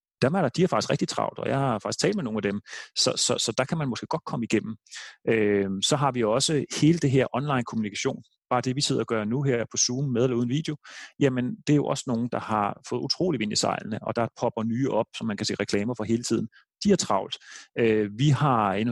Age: 30-49